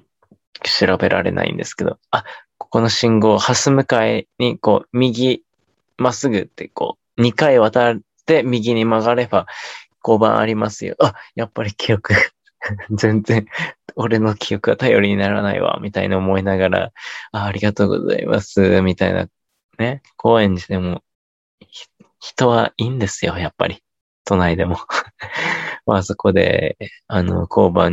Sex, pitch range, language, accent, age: male, 95-115 Hz, Japanese, native, 20-39